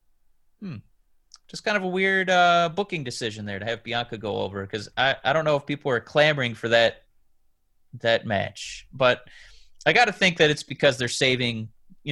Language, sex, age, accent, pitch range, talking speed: English, male, 30-49, American, 110-165 Hz, 190 wpm